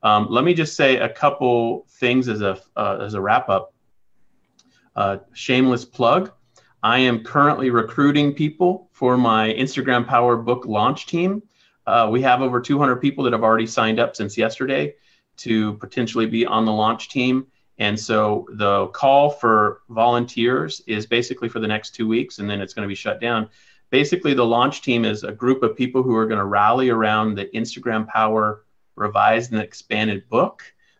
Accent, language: American, English